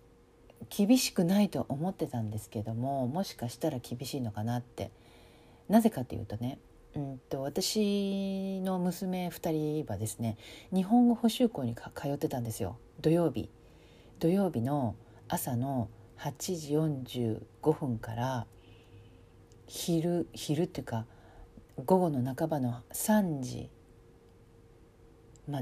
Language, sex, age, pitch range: Japanese, female, 40-59, 115-180 Hz